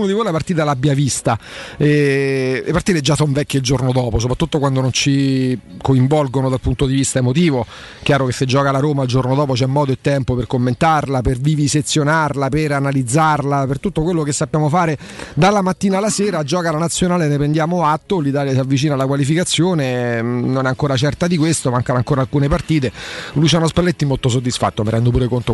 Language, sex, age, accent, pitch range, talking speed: Italian, male, 30-49, native, 125-150 Hz, 195 wpm